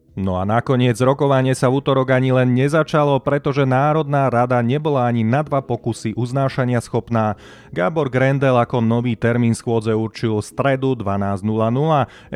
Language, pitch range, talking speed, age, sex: Slovak, 110-135 Hz, 140 wpm, 30-49, male